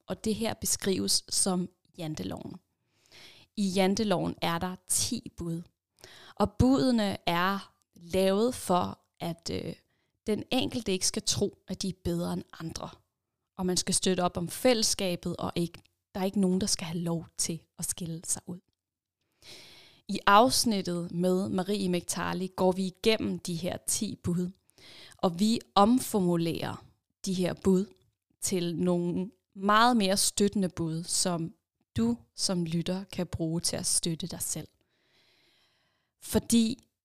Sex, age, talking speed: female, 20-39, 145 wpm